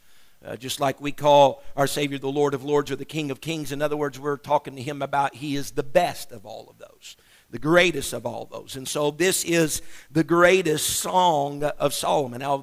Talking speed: 230 wpm